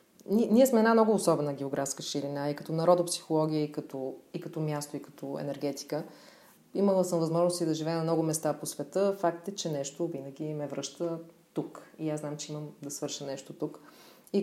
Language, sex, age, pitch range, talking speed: Bulgarian, female, 30-49, 150-185 Hz, 185 wpm